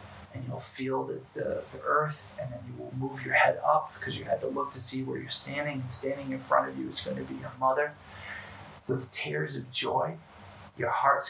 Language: English